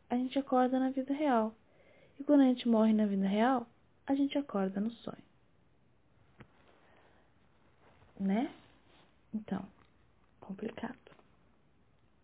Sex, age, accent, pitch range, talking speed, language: female, 10-29, Brazilian, 210-260 Hz, 110 wpm, Portuguese